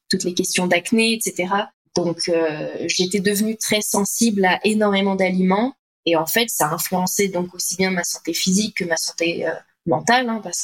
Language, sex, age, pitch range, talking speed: French, female, 20-39, 175-205 Hz, 185 wpm